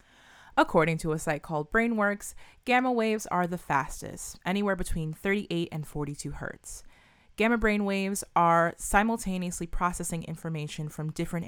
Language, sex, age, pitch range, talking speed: English, female, 20-39, 150-190 Hz, 135 wpm